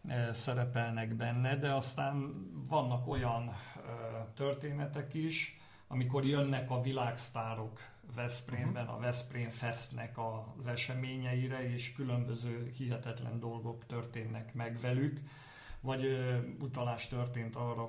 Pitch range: 115-130 Hz